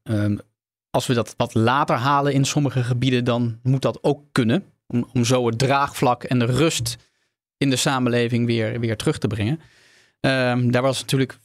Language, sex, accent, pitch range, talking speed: Dutch, male, Dutch, 120-145 Hz, 175 wpm